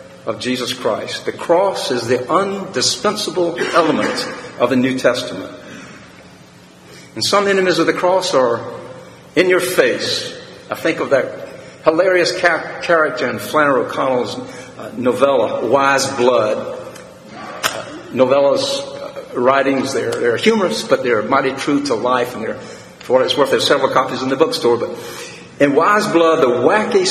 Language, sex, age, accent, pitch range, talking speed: English, male, 50-69, American, 140-195 Hz, 150 wpm